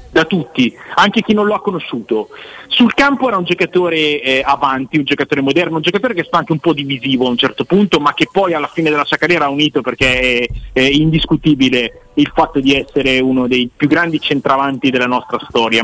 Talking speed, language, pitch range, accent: 210 wpm, Italian, 135-185 Hz, native